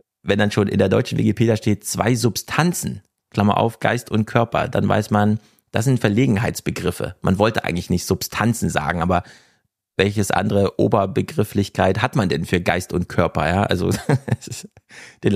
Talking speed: 160 wpm